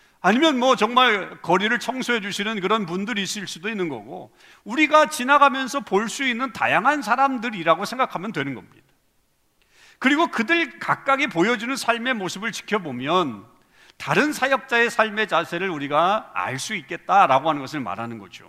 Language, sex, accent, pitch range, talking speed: English, male, Korean, 180-255 Hz, 125 wpm